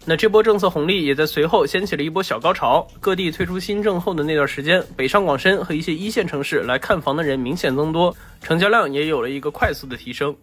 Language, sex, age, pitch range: Chinese, male, 20-39, 150-205 Hz